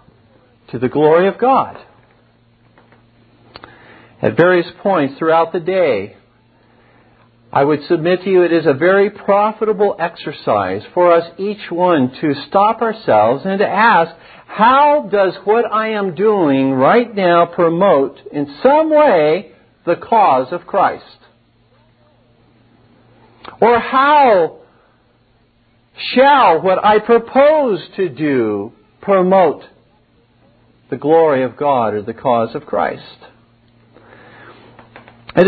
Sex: male